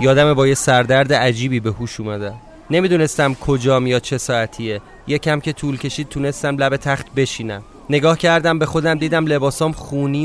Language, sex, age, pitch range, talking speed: Persian, male, 30-49, 130-165 Hz, 165 wpm